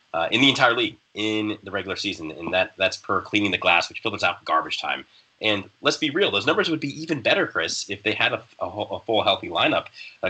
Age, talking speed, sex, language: 30-49, 250 wpm, male, English